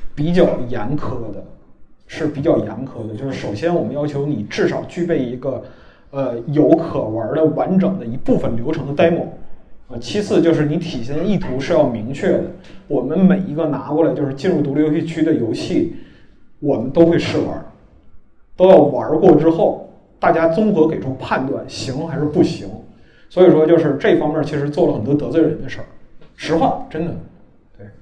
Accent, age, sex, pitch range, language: native, 20-39, male, 135-170 Hz, Chinese